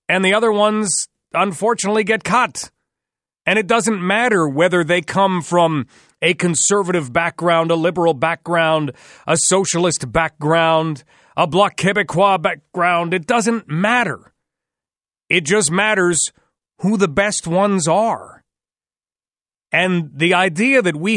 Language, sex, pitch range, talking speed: English, male, 165-210 Hz, 125 wpm